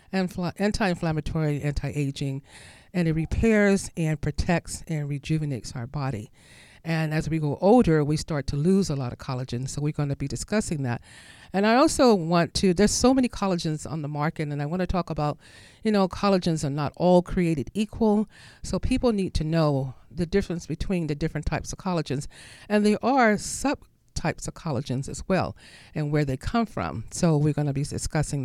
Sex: female